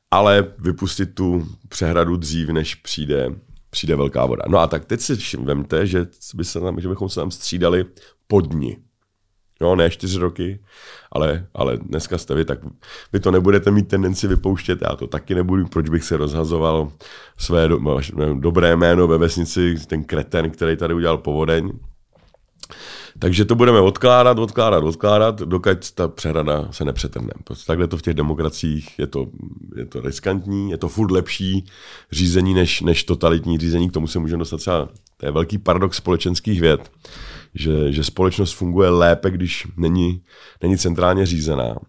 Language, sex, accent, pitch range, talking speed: Czech, male, native, 85-100 Hz, 160 wpm